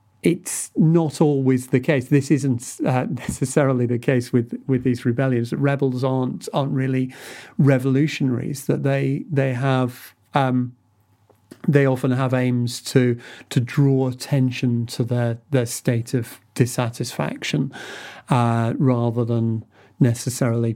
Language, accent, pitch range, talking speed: English, British, 120-135 Hz, 125 wpm